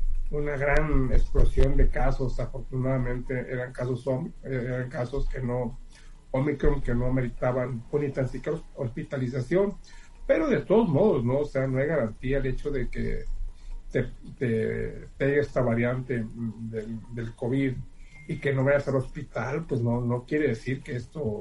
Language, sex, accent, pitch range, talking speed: Spanish, male, Mexican, 125-155 Hz, 145 wpm